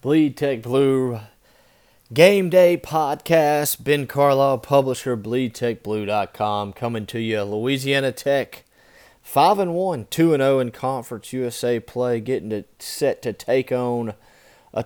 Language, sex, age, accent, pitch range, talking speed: English, male, 30-49, American, 110-130 Hz, 115 wpm